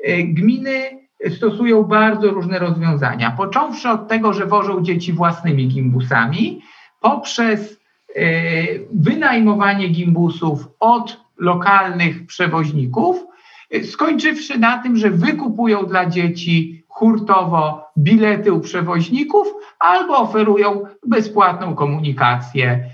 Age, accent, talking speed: 50-69, native, 90 wpm